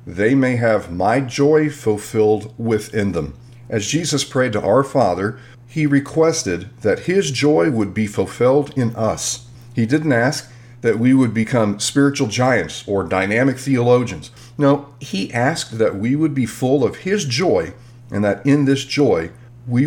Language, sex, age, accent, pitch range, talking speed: English, male, 40-59, American, 110-140 Hz, 160 wpm